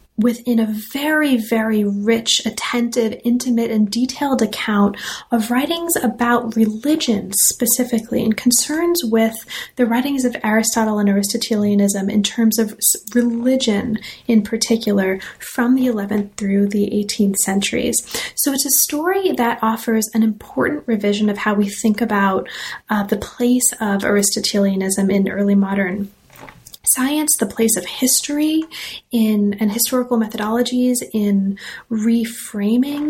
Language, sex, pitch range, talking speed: English, female, 210-250 Hz, 125 wpm